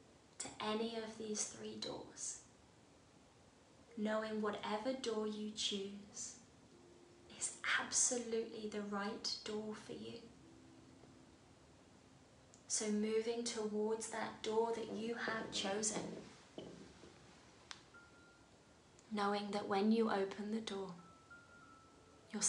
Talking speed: 95 wpm